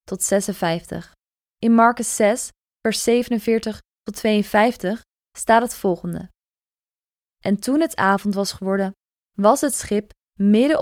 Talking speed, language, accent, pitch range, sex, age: 120 wpm, Dutch, Dutch, 195-235 Hz, female, 20-39